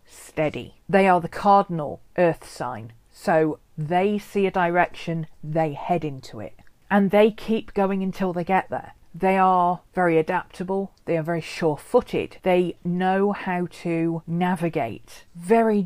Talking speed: 145 wpm